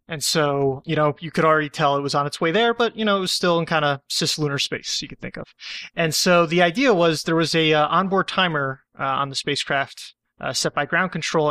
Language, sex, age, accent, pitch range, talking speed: English, male, 30-49, American, 145-180 Hz, 255 wpm